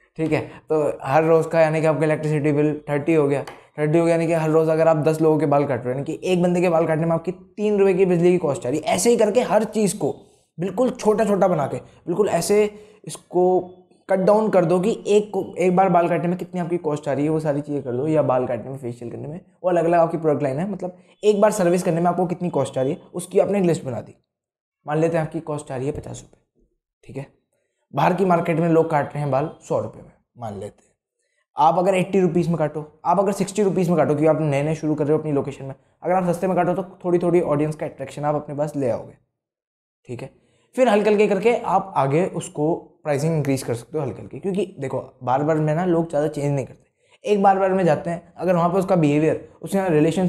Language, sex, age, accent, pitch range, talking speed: Hindi, male, 20-39, native, 150-185 Hz, 260 wpm